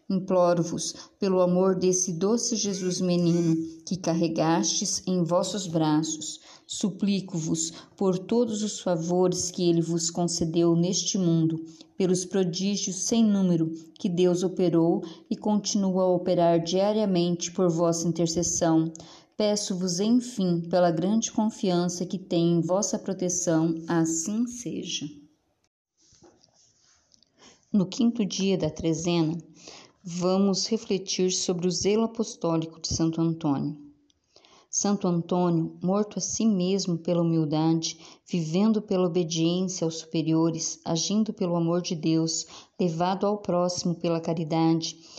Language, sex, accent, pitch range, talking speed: Portuguese, female, Brazilian, 165-195 Hz, 115 wpm